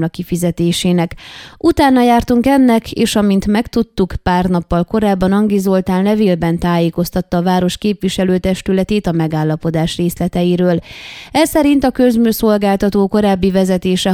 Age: 20-39